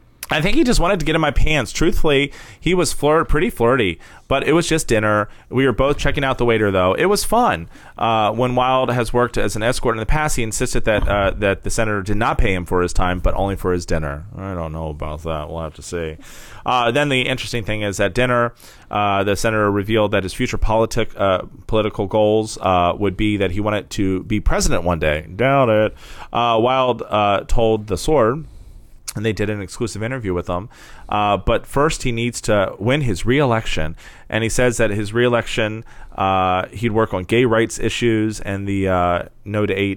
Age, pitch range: 30-49, 90-115 Hz